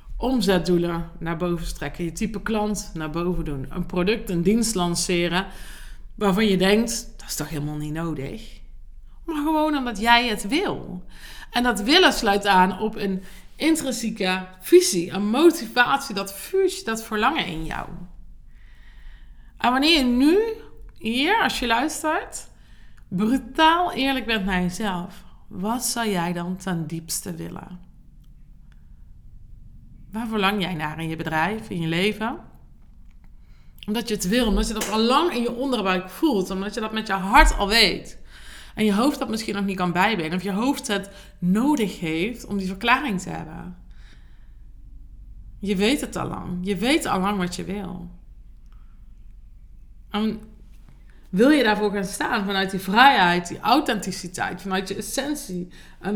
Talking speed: 155 wpm